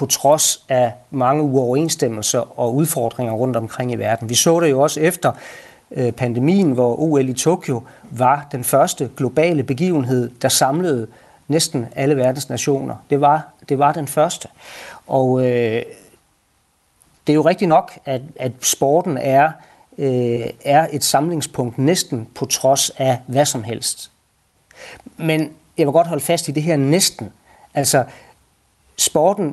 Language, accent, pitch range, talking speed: Danish, native, 130-155 Hz, 140 wpm